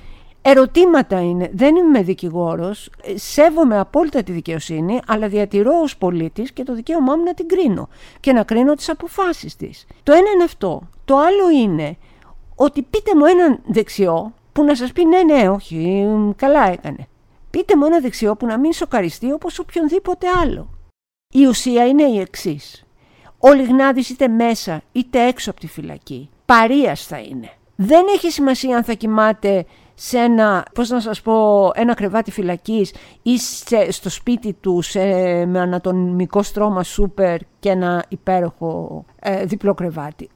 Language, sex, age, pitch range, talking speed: Greek, female, 50-69, 180-270 Hz, 160 wpm